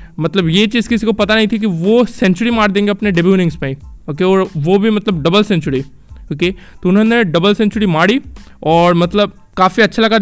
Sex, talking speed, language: male, 205 wpm, Hindi